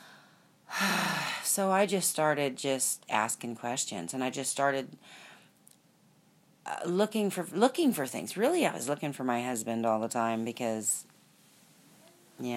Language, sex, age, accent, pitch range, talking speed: English, female, 40-59, American, 145-185 Hz, 135 wpm